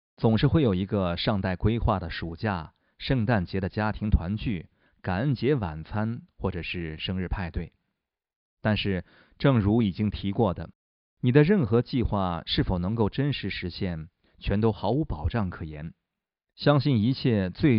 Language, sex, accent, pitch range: Chinese, male, native, 90-115 Hz